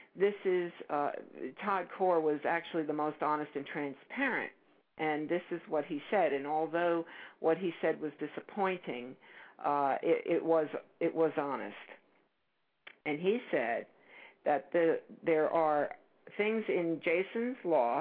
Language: English